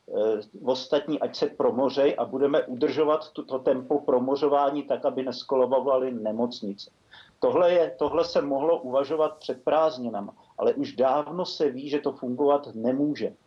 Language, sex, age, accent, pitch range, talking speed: Czech, male, 50-69, native, 130-155 Hz, 145 wpm